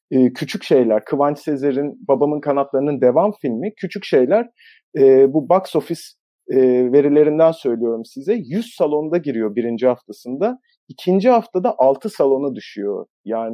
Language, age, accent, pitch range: Turkish, 40-59, native, 125-195 Hz